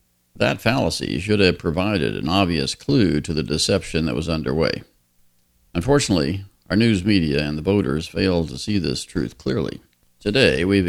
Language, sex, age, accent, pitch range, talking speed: English, male, 50-69, American, 70-95 Hz, 160 wpm